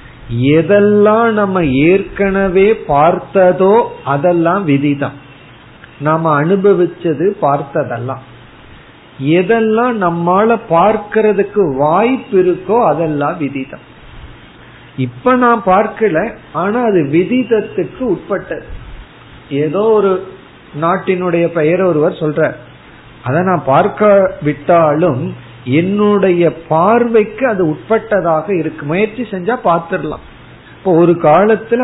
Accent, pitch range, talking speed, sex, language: native, 145-200 Hz, 60 wpm, male, Tamil